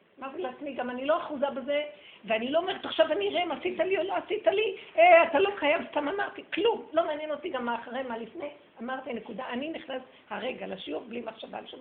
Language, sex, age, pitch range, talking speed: Hebrew, female, 50-69, 215-280 Hz, 235 wpm